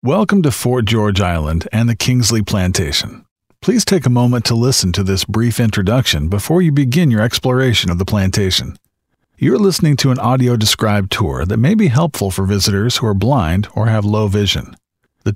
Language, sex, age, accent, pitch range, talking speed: English, male, 50-69, American, 100-140 Hz, 185 wpm